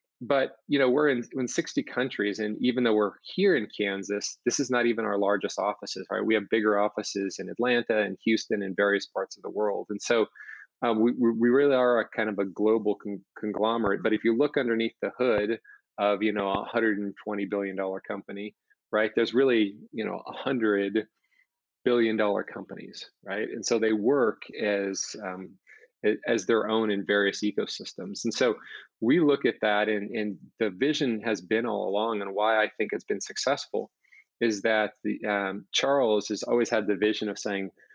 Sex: male